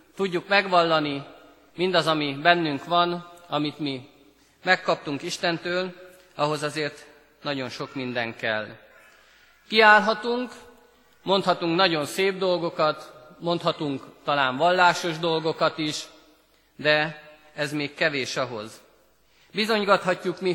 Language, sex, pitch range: Hungarian, male, 145-180 Hz